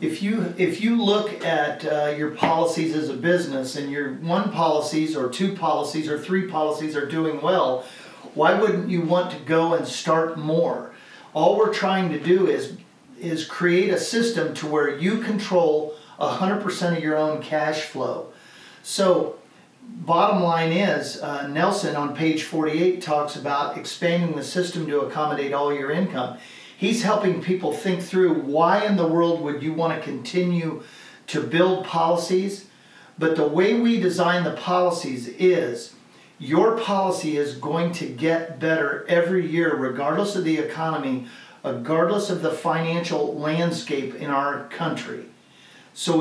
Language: English